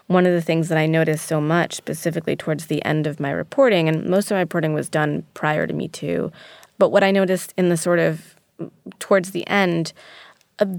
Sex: female